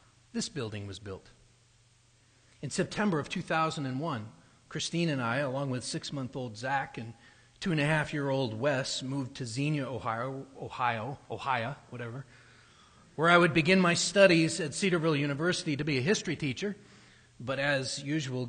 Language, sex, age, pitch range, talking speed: English, male, 40-59, 120-175 Hz, 140 wpm